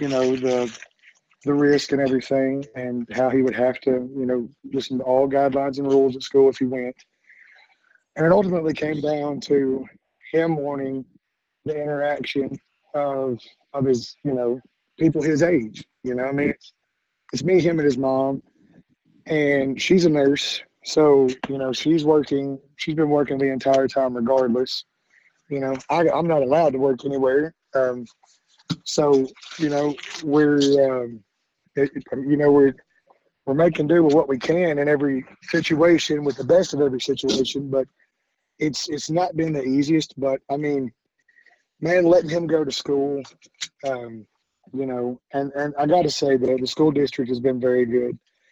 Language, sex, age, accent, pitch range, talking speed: English, male, 30-49, American, 130-150 Hz, 170 wpm